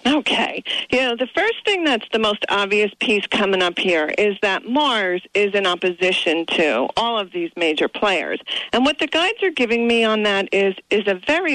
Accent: American